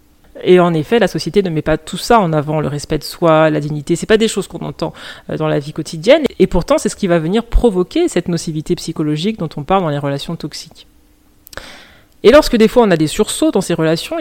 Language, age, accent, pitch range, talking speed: French, 30-49, French, 155-200 Hz, 240 wpm